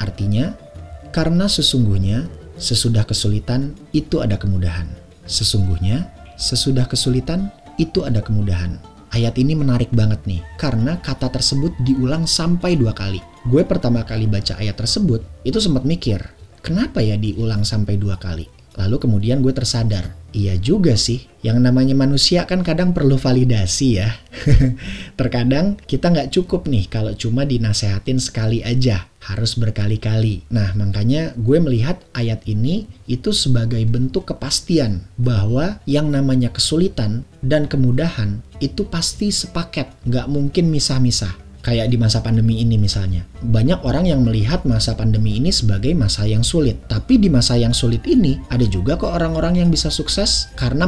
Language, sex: Indonesian, male